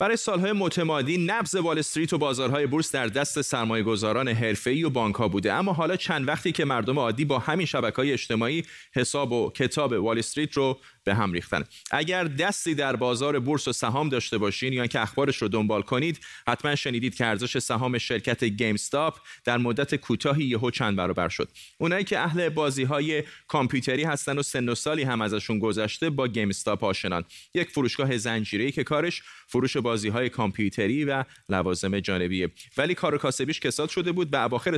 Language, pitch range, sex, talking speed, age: Persian, 115-155 Hz, male, 165 wpm, 30-49